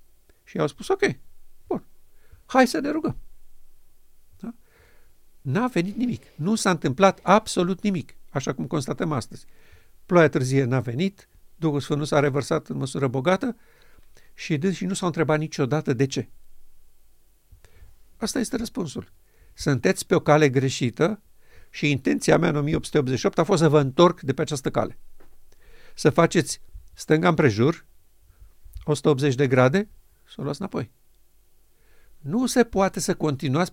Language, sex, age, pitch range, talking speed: Romanian, male, 50-69, 125-170 Hz, 140 wpm